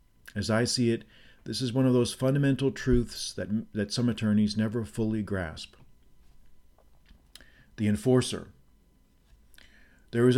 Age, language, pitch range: 40-59, English, 105-130 Hz